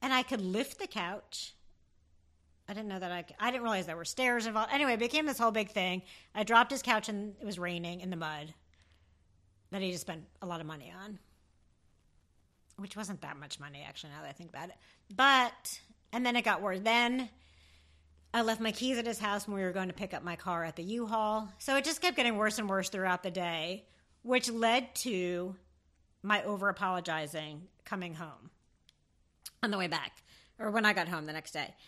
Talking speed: 215 wpm